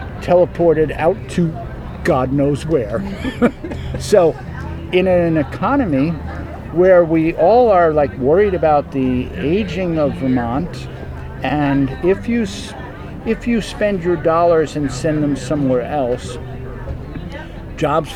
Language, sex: English, male